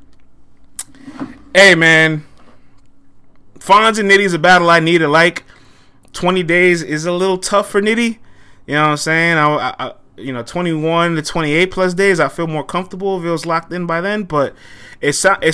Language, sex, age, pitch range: English, male, 20-39, 120-175 Hz